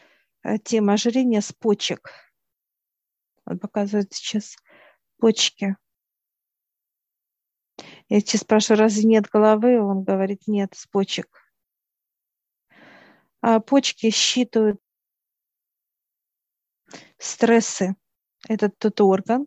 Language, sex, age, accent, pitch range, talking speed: Russian, female, 40-59, native, 195-225 Hz, 80 wpm